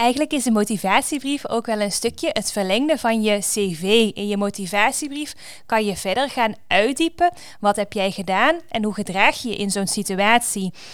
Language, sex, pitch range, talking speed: Dutch, female, 210-285 Hz, 180 wpm